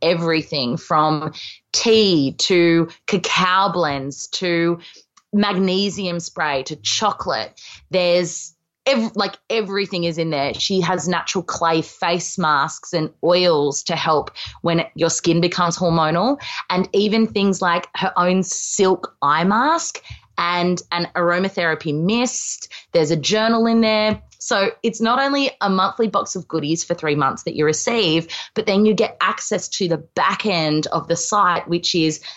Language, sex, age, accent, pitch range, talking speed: English, female, 20-39, Australian, 155-195 Hz, 145 wpm